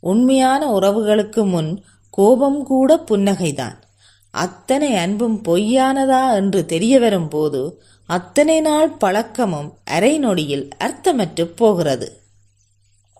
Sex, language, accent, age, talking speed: female, Tamil, native, 30-49, 80 wpm